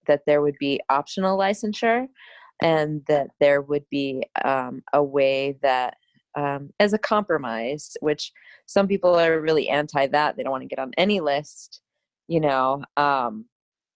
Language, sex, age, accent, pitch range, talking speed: English, female, 20-39, American, 140-160 Hz, 160 wpm